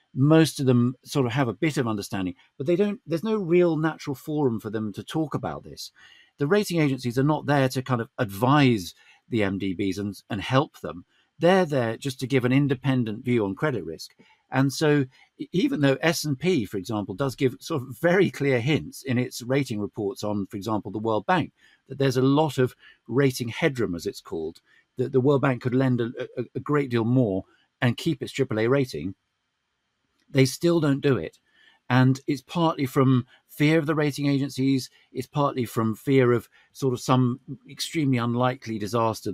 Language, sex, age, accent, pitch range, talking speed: English, male, 50-69, British, 115-145 Hz, 200 wpm